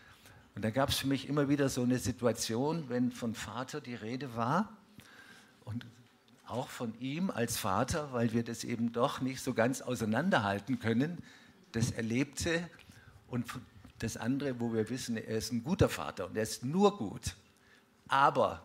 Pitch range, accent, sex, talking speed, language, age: 105-130 Hz, German, male, 165 wpm, German, 50-69